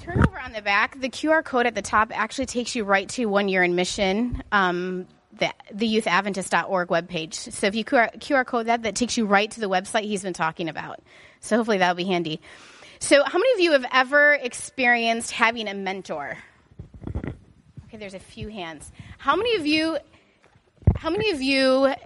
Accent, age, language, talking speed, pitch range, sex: American, 30-49, English, 200 wpm, 215-290 Hz, female